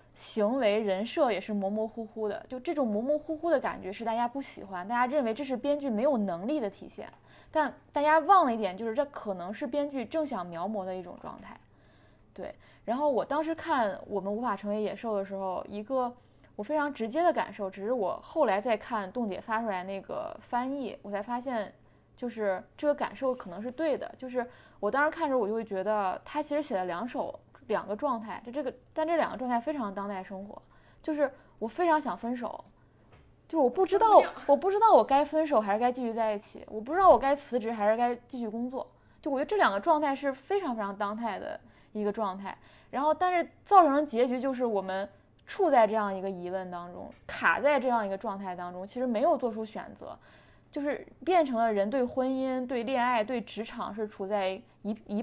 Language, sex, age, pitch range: Chinese, female, 20-39, 210-290 Hz